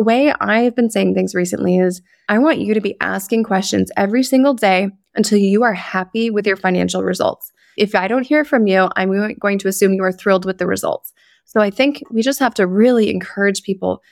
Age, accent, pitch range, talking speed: 20-39, American, 185-230 Hz, 220 wpm